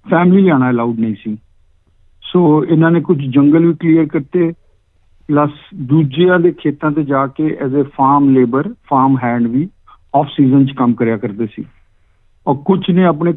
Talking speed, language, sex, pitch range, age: 85 wpm, Punjabi, male, 125-160 Hz, 50-69